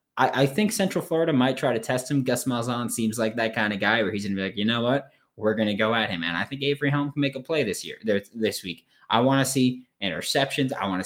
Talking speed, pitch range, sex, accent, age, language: 290 wpm, 100-130 Hz, male, American, 20-39, English